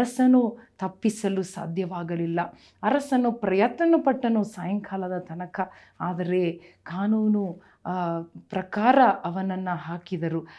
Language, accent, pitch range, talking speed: Kannada, native, 180-220 Hz, 60 wpm